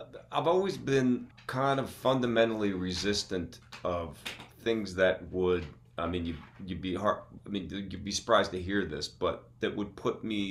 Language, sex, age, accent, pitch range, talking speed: English, male, 30-49, American, 75-95 Hz, 170 wpm